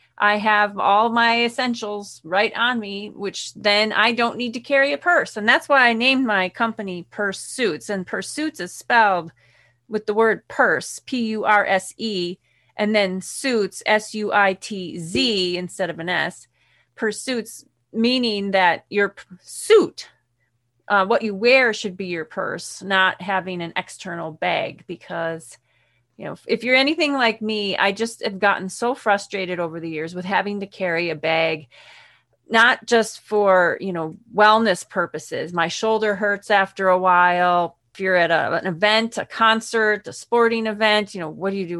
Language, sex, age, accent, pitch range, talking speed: English, female, 30-49, American, 180-225 Hz, 175 wpm